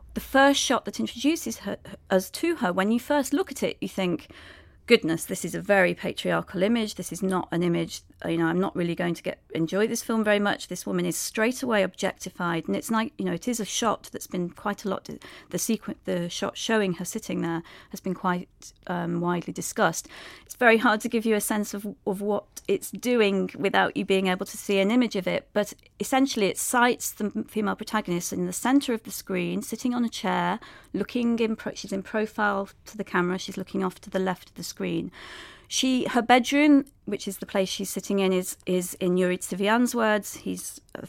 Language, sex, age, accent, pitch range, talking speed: English, female, 40-59, British, 185-225 Hz, 220 wpm